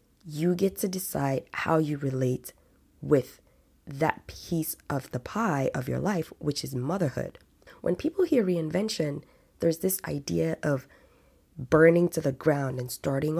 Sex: female